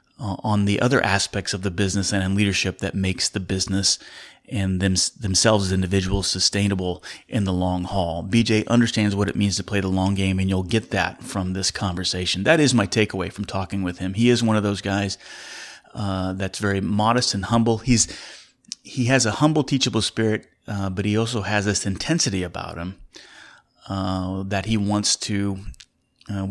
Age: 30-49